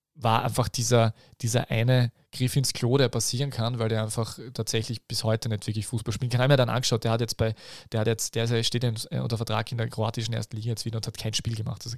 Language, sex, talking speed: German, male, 250 wpm